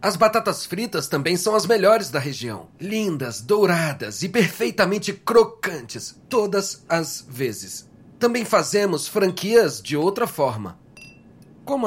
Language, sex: Portuguese, male